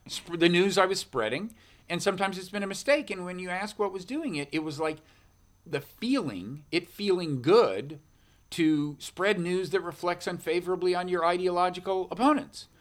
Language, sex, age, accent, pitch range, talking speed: English, male, 40-59, American, 120-170 Hz, 175 wpm